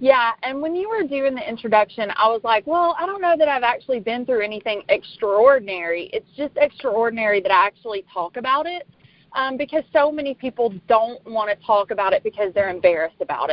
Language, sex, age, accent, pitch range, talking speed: English, female, 30-49, American, 195-270 Hz, 205 wpm